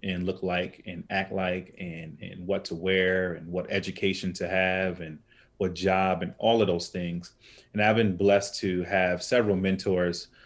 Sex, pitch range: male, 90-100 Hz